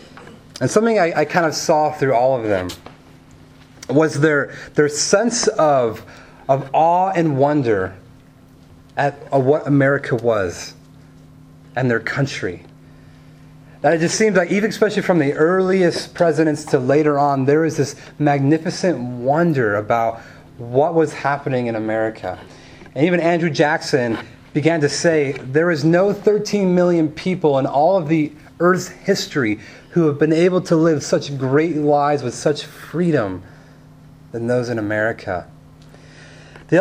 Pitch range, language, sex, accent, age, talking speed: 140-180 Hz, English, male, American, 30-49, 145 wpm